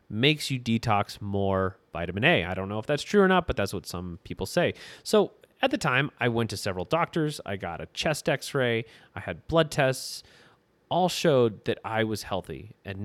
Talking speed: 205 wpm